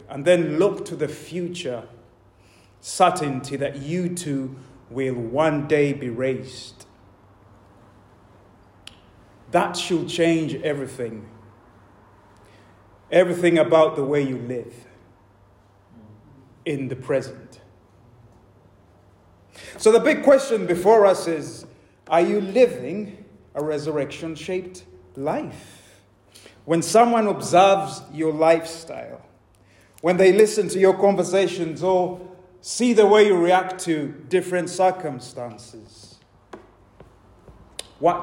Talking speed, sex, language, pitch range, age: 100 wpm, male, English, 105-180 Hz, 30-49